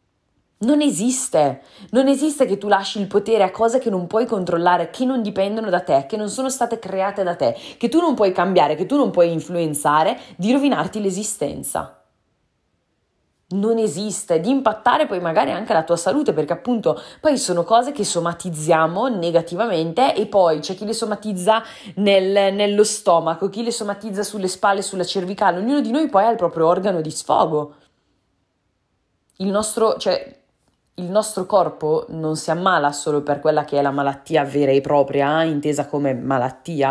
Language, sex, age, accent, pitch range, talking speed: Italian, female, 20-39, native, 165-220 Hz, 175 wpm